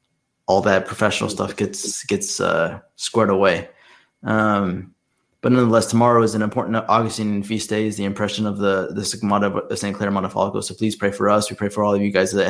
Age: 20-39